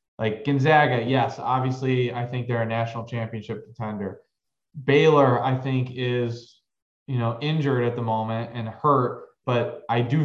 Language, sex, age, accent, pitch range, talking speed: English, male, 20-39, American, 125-150 Hz, 150 wpm